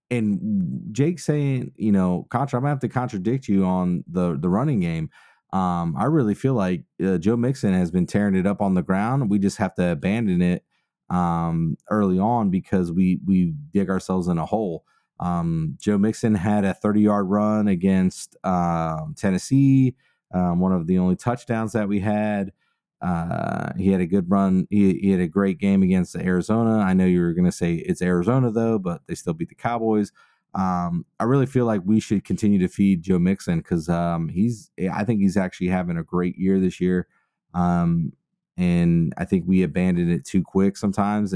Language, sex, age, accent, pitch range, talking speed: English, male, 30-49, American, 90-115 Hz, 195 wpm